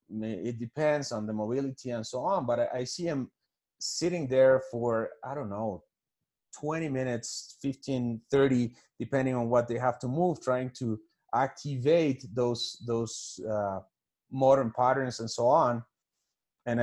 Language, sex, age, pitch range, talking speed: French, male, 30-49, 110-130 Hz, 145 wpm